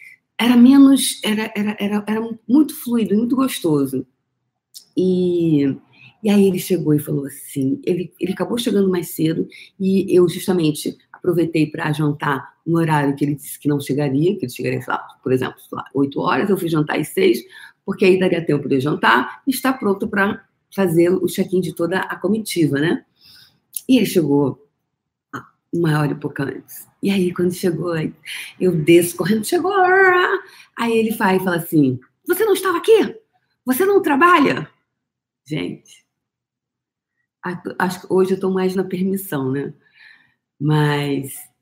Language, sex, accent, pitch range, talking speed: Portuguese, female, Brazilian, 150-210 Hz, 160 wpm